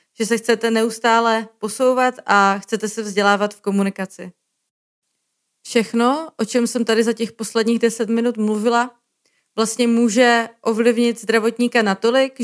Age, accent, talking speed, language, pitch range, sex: 30-49, native, 130 wpm, Czech, 205-235 Hz, female